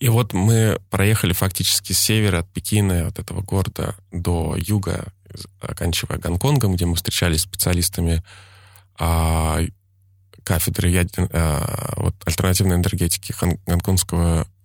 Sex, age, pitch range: male, 20-39, 85-100 Hz